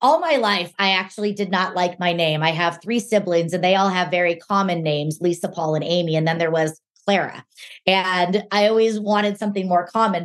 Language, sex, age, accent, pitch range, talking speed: English, female, 20-39, American, 165-200 Hz, 215 wpm